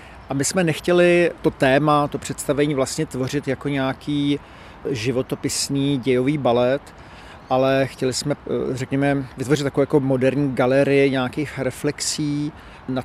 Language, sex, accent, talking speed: Czech, male, native, 125 wpm